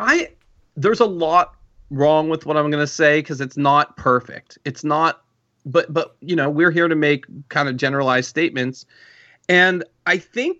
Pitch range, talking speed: 150-200 Hz, 175 wpm